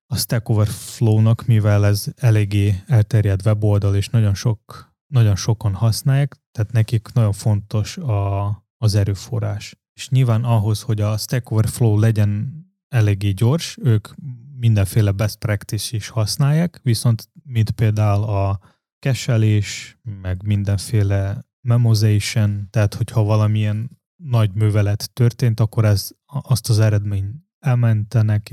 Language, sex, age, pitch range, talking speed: Hungarian, male, 20-39, 105-125 Hz, 120 wpm